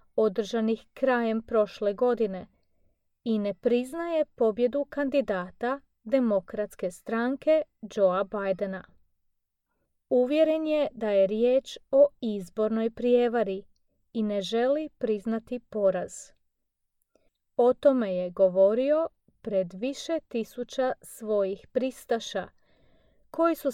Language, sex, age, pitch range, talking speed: Croatian, female, 30-49, 205-265 Hz, 95 wpm